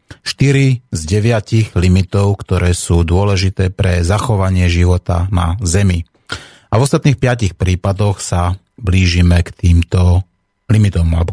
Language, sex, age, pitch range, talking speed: Slovak, male, 30-49, 90-110 Hz, 120 wpm